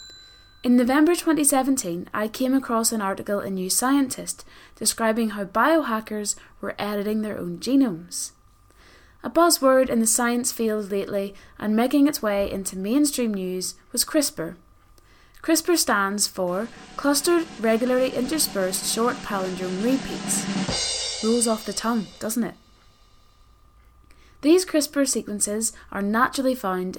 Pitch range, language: 195-260 Hz, English